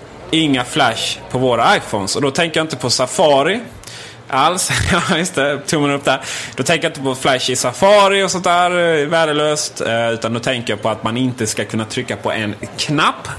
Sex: male